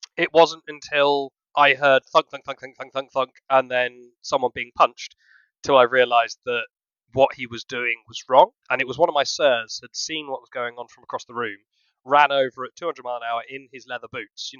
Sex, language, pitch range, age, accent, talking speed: male, English, 120-140 Hz, 20-39, British, 235 wpm